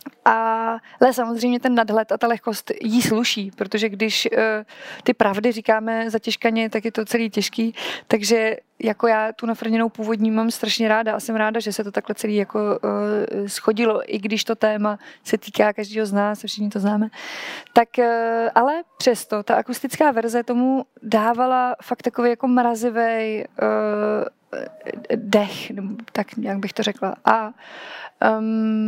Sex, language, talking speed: female, Czech, 160 wpm